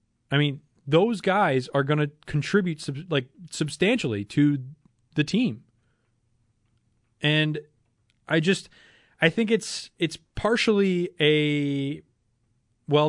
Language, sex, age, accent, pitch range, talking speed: English, male, 20-39, American, 120-165 Hz, 110 wpm